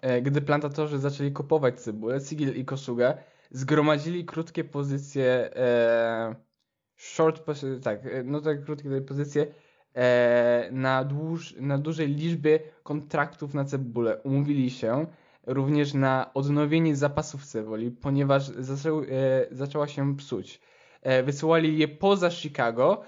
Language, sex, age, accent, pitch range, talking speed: Polish, male, 10-29, native, 135-190 Hz, 115 wpm